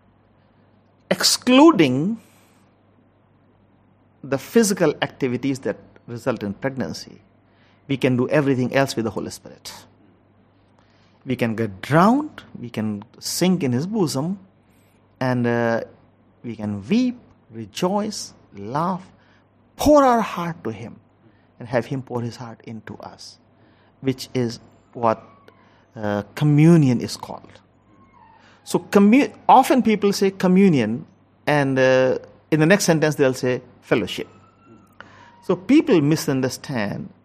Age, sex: 50-69, male